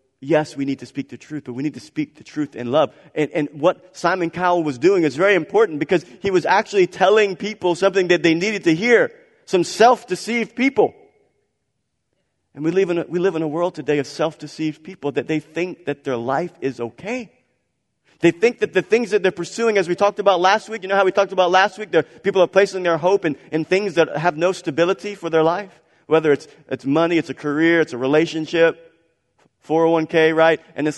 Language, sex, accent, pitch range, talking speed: English, male, American, 145-190 Hz, 225 wpm